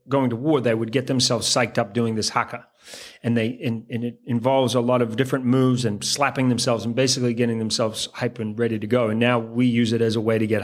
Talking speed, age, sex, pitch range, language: 255 wpm, 40-59, male, 115-140 Hz, English